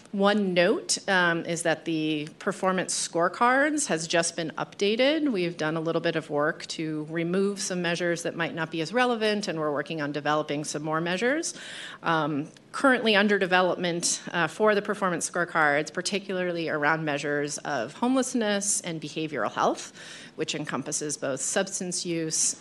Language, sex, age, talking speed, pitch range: English, female, 30-49, 155 wpm, 160-205 Hz